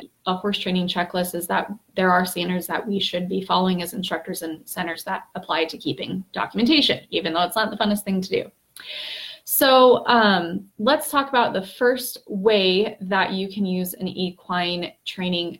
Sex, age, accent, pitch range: female, 20-39, American, 180-210 Hz